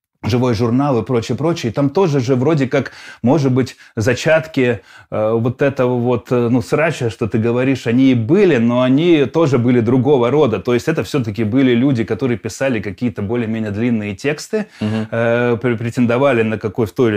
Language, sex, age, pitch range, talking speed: Russian, male, 20-39, 115-135 Hz, 175 wpm